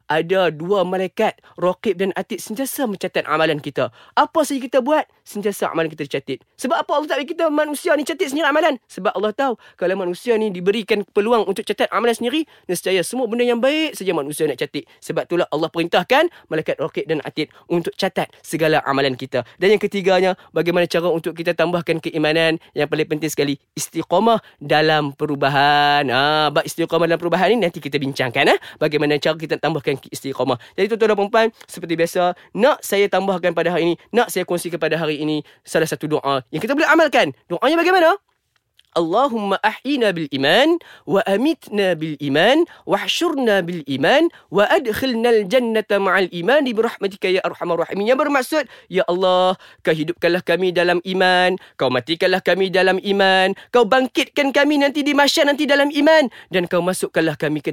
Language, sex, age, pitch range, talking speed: Malay, male, 20-39, 160-235 Hz, 175 wpm